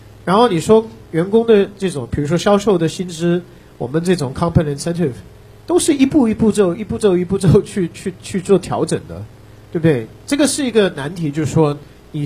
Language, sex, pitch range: Chinese, male, 130-195 Hz